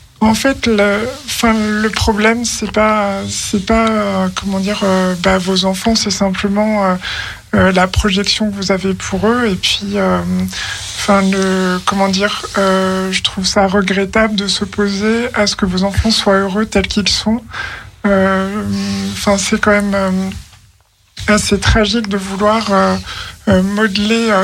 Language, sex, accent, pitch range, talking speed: French, male, French, 190-210 Hz, 150 wpm